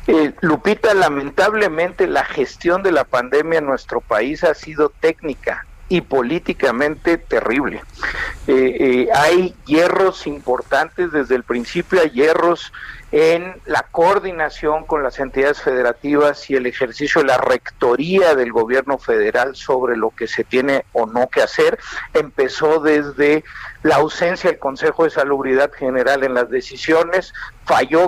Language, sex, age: Spanish, male, 50-69